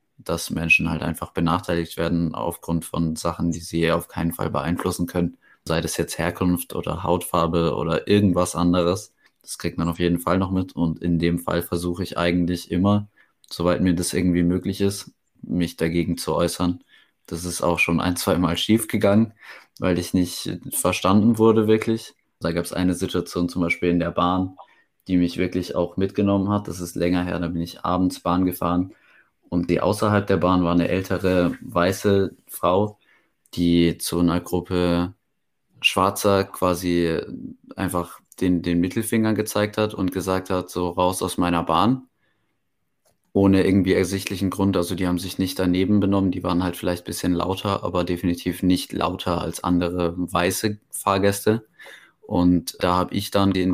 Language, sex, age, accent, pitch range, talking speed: German, male, 20-39, German, 85-95 Hz, 170 wpm